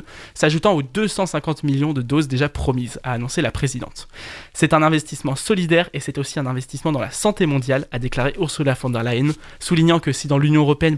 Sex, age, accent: male, 20-39, French